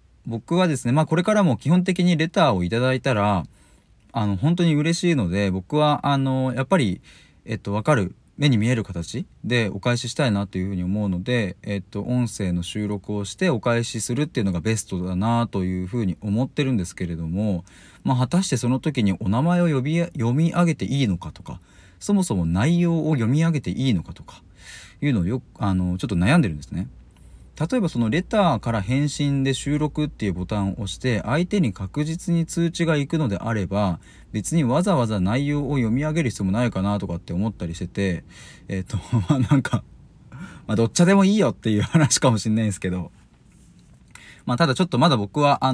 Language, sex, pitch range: Japanese, male, 95-135 Hz